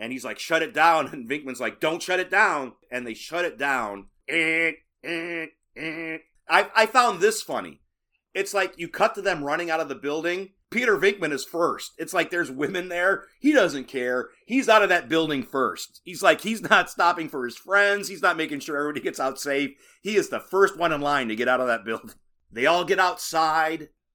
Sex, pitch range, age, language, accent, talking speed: male, 130-185 Hz, 40-59, English, American, 210 wpm